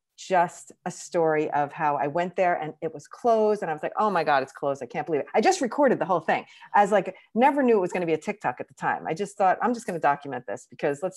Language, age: English, 40-59